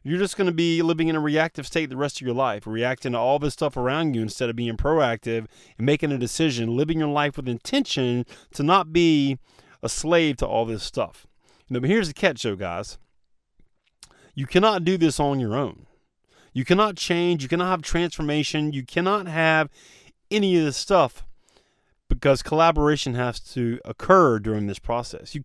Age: 30-49